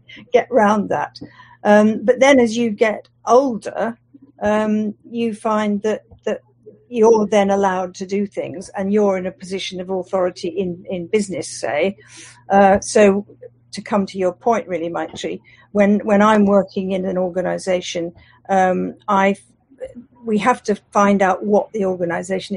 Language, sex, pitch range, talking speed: English, female, 185-215 Hz, 155 wpm